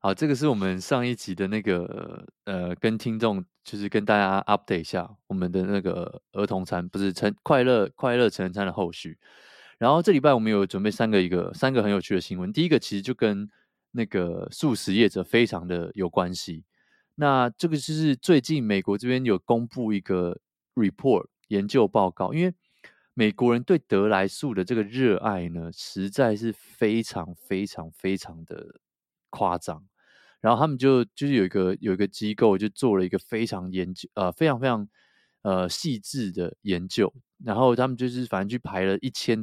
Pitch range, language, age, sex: 95-120 Hz, Chinese, 20-39, male